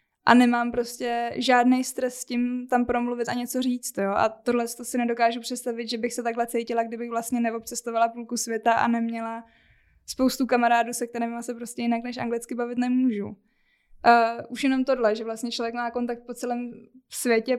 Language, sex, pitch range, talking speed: Czech, female, 230-250 Hz, 180 wpm